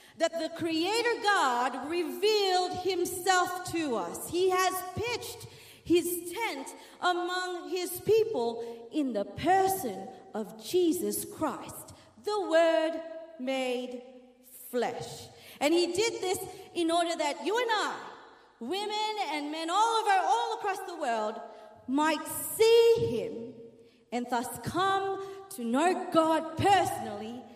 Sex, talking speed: female, 120 wpm